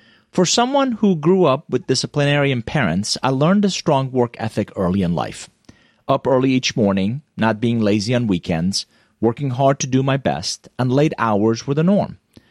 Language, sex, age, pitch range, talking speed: English, male, 30-49, 110-170 Hz, 180 wpm